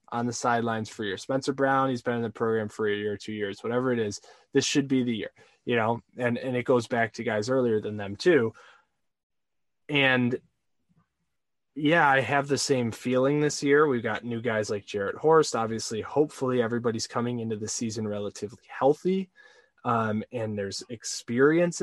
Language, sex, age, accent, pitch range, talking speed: English, male, 20-39, American, 110-140 Hz, 185 wpm